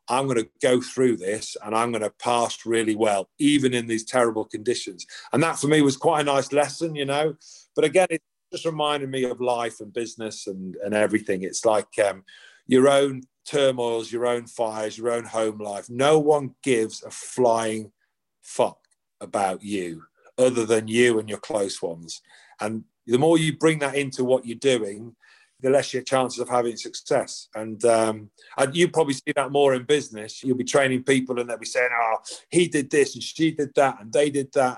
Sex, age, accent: male, 40-59, British